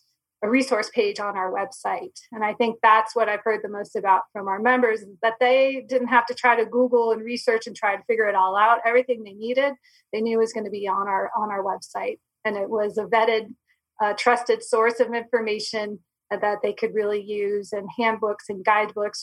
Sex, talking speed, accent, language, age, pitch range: female, 220 wpm, American, English, 30-49, 205-240 Hz